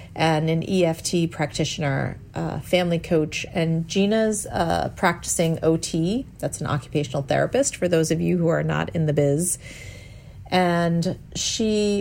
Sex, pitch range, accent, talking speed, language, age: female, 155-185 Hz, American, 145 wpm, English, 40-59